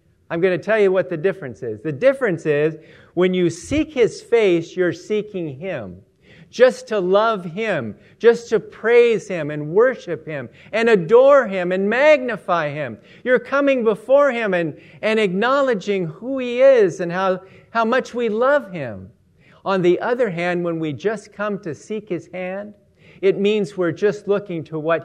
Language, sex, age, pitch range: English, male, 50-69, 150-215 Hz